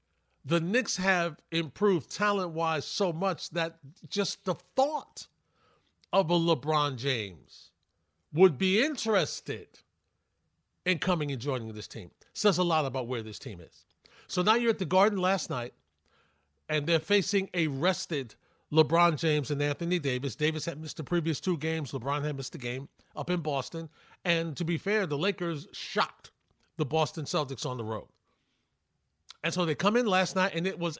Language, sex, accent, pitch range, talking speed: English, male, American, 140-185 Hz, 170 wpm